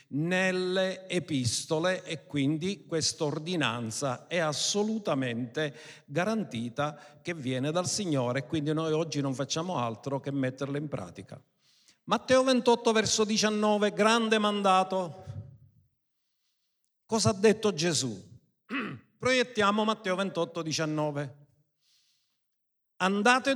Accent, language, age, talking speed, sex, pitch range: native, Italian, 50-69, 95 wpm, male, 150-220 Hz